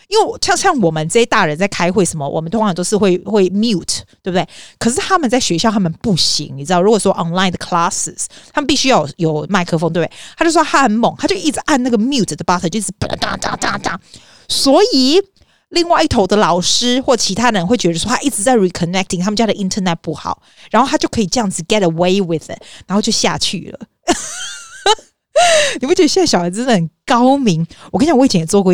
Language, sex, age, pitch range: Chinese, female, 30-49, 170-250 Hz